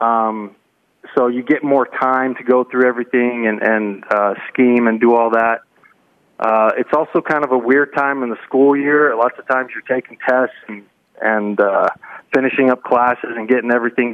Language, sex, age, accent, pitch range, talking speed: English, male, 20-39, American, 115-130 Hz, 190 wpm